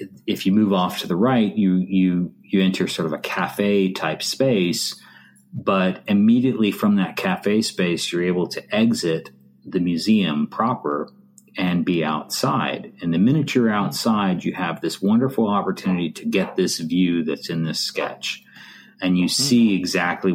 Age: 40-59